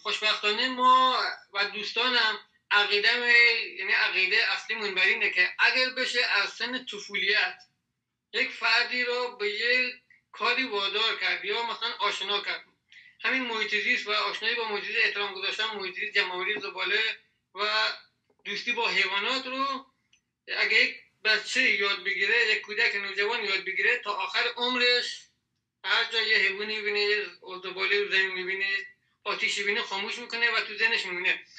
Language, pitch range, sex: Persian, 205-250 Hz, male